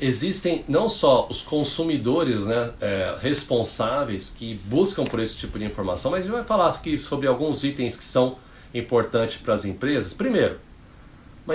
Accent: Brazilian